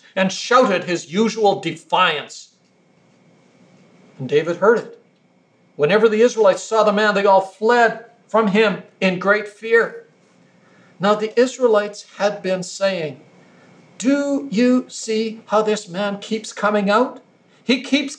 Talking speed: 130 wpm